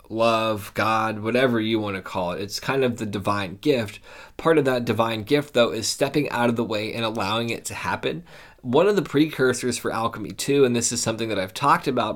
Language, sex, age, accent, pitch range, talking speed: English, male, 20-39, American, 110-130 Hz, 225 wpm